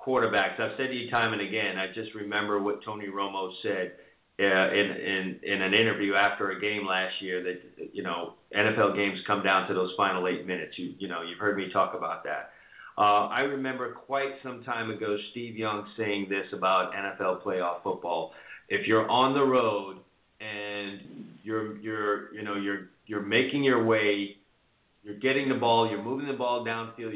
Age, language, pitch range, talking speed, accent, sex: 40-59, English, 100-125 Hz, 190 wpm, American, male